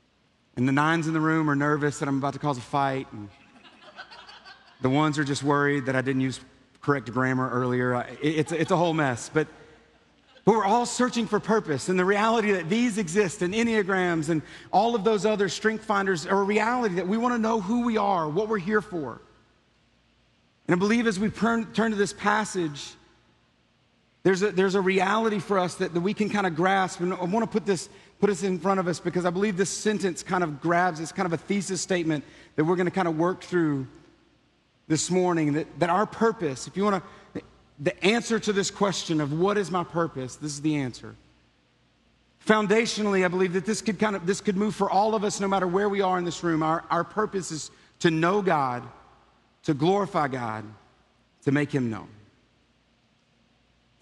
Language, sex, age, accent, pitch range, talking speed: English, male, 40-59, American, 150-205 Hz, 210 wpm